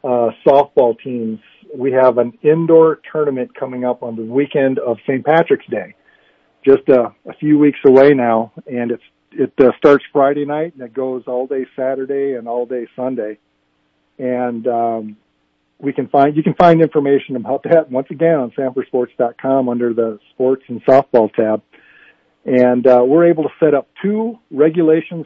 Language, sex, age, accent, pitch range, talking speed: English, male, 50-69, American, 120-150 Hz, 170 wpm